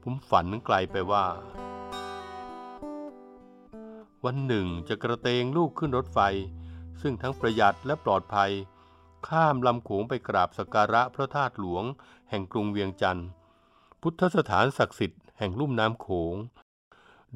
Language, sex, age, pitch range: Thai, male, 60-79, 95-130 Hz